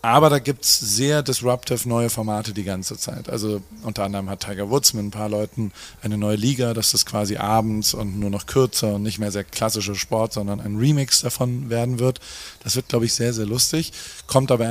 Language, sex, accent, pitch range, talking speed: German, male, German, 105-130 Hz, 220 wpm